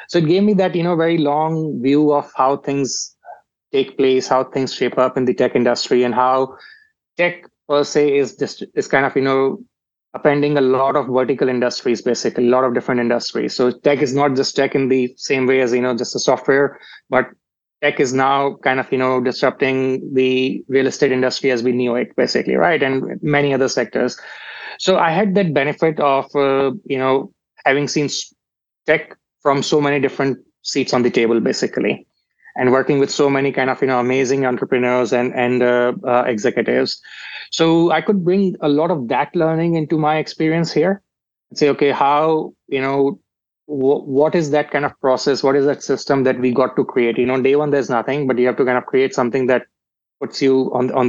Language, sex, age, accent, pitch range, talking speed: English, male, 30-49, Indian, 130-150 Hz, 210 wpm